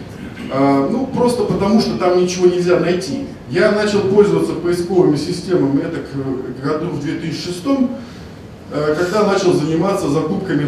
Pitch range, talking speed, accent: 140-185 Hz, 140 wpm, native